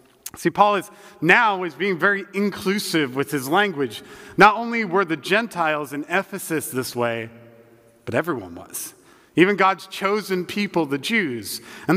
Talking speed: 150 wpm